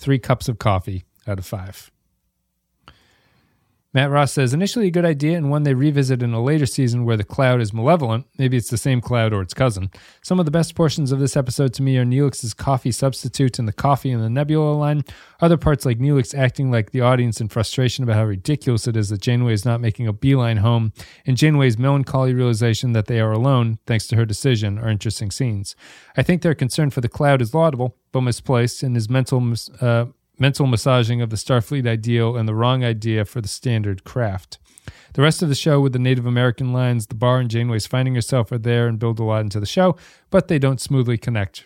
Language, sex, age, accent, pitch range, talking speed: English, male, 30-49, American, 115-140 Hz, 220 wpm